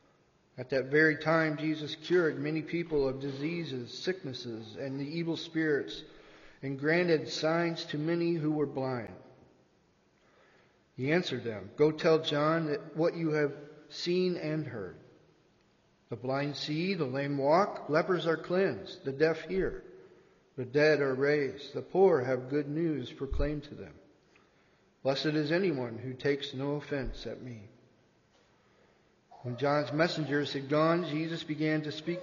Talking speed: 145 wpm